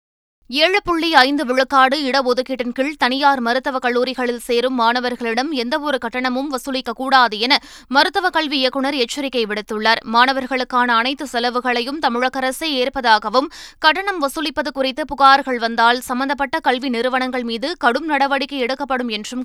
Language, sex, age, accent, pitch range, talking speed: Tamil, female, 20-39, native, 240-280 Hz, 115 wpm